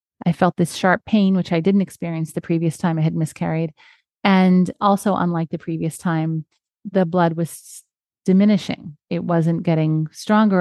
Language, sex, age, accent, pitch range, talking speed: English, female, 30-49, American, 160-185 Hz, 165 wpm